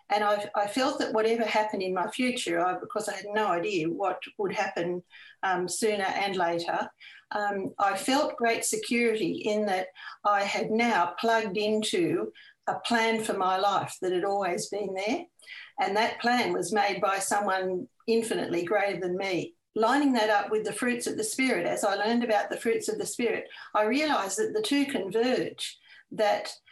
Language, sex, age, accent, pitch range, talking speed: English, female, 50-69, Australian, 200-245 Hz, 175 wpm